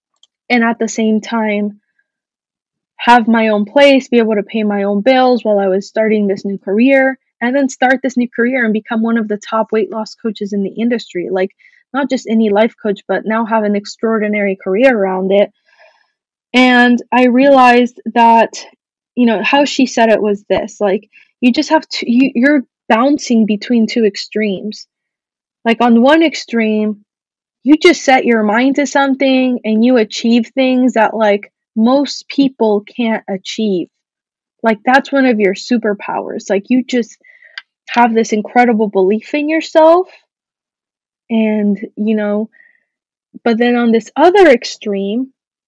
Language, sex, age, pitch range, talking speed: English, female, 20-39, 210-260 Hz, 160 wpm